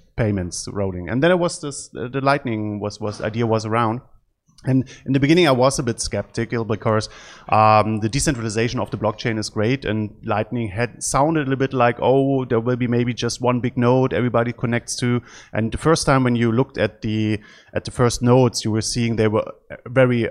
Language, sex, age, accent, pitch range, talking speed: English, male, 30-49, German, 105-125 Hz, 215 wpm